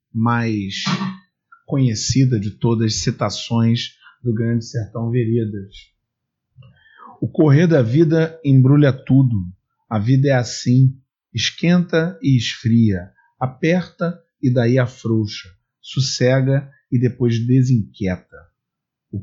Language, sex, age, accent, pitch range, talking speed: Portuguese, male, 40-59, Brazilian, 115-145 Hz, 100 wpm